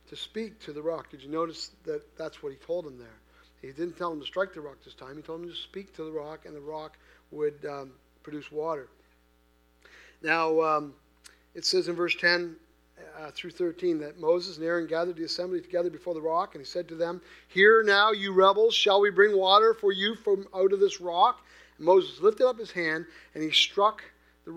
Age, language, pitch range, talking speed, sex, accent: 40-59, English, 130-180 Hz, 220 wpm, male, American